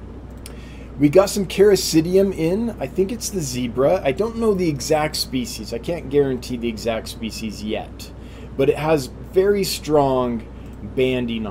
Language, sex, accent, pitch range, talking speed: English, male, American, 115-150 Hz, 150 wpm